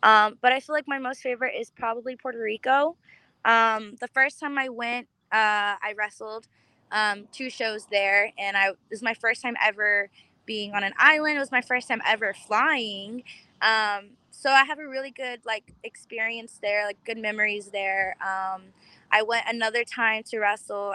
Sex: female